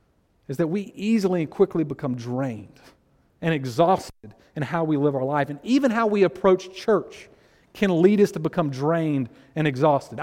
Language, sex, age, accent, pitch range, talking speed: English, male, 40-59, American, 155-205 Hz, 175 wpm